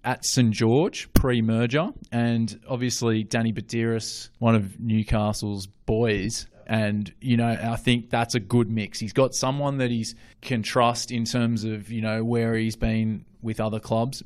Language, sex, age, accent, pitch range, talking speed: English, male, 20-39, Australian, 110-130 Hz, 170 wpm